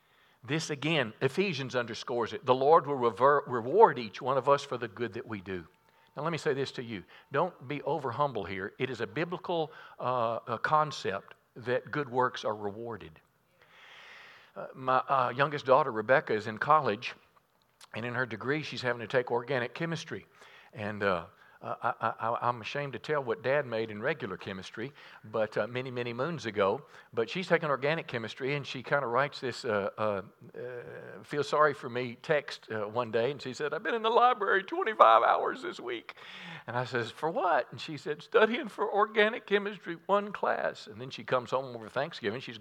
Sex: male